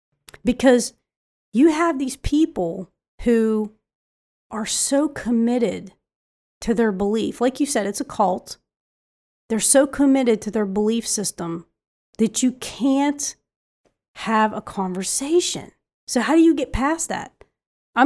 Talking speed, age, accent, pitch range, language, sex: 130 wpm, 30-49, American, 185-245 Hz, English, female